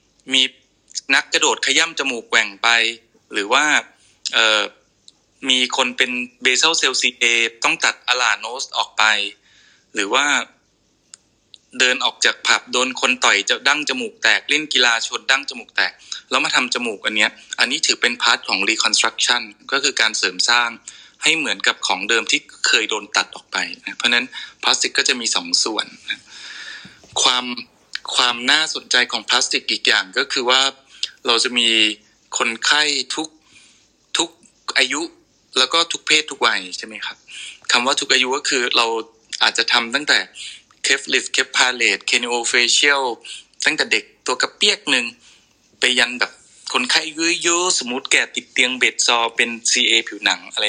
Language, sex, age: Thai, male, 20-39